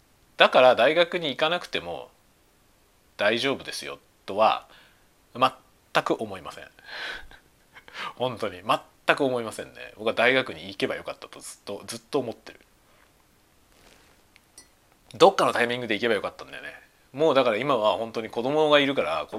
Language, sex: Japanese, male